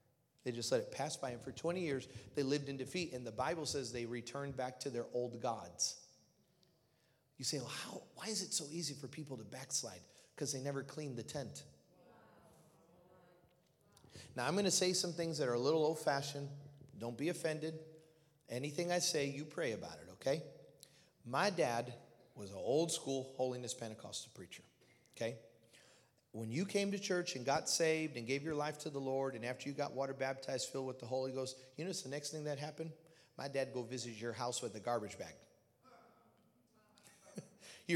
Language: English